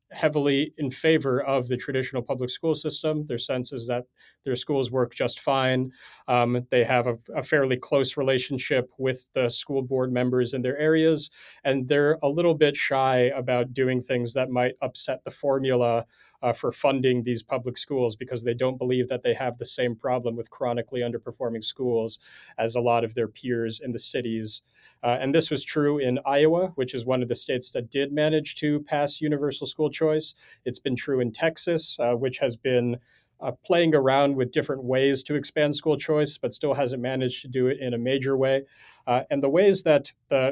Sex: male